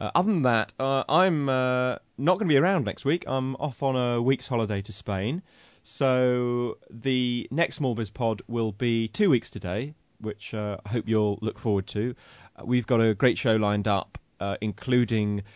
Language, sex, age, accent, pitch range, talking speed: English, male, 30-49, British, 95-125 Hz, 195 wpm